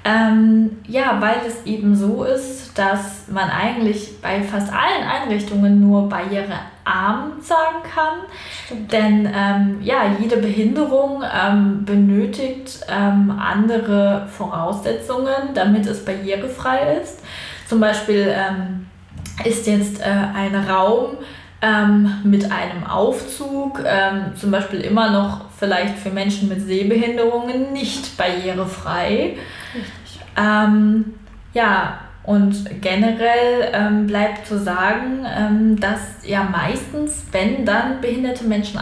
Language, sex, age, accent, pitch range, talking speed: German, female, 20-39, German, 200-235 Hz, 110 wpm